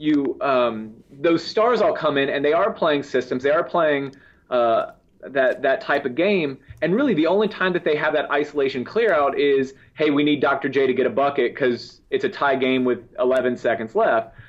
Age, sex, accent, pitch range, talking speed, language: 30-49, male, American, 125-155 Hz, 215 wpm, English